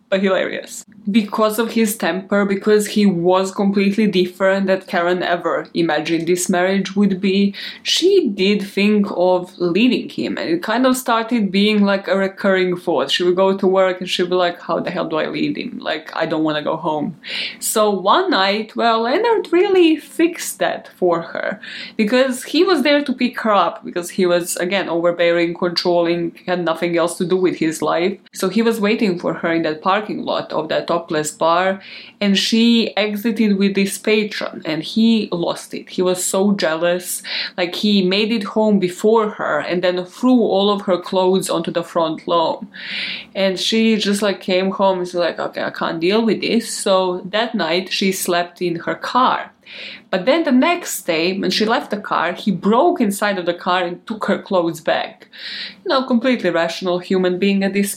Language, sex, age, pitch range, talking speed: English, female, 20-39, 180-225 Hz, 195 wpm